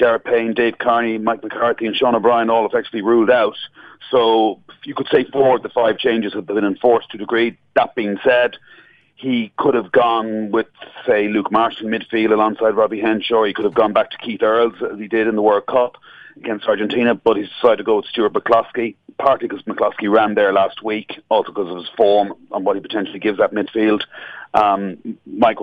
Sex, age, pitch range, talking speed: male, 40-59, 110-135 Hz, 210 wpm